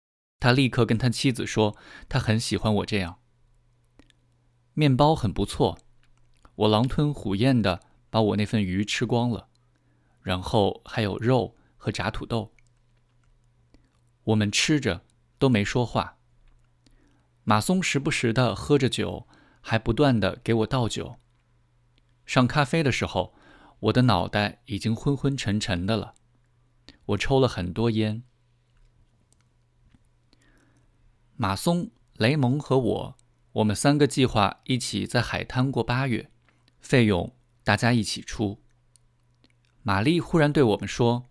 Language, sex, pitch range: Chinese, male, 110-125 Hz